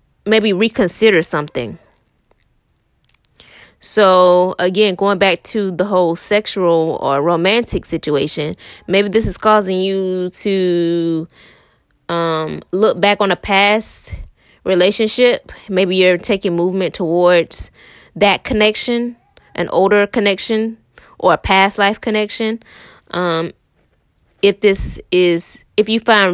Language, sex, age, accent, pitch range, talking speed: English, female, 20-39, American, 175-205 Hz, 110 wpm